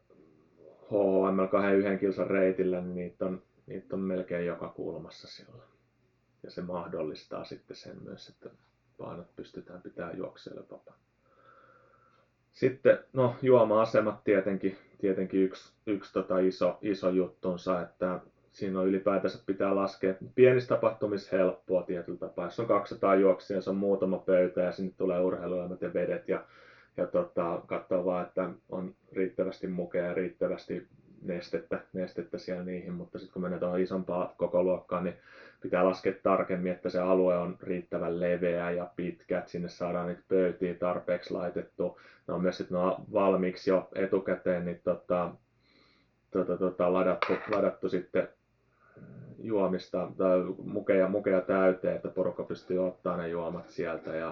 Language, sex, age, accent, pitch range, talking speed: Finnish, male, 30-49, native, 90-95 Hz, 140 wpm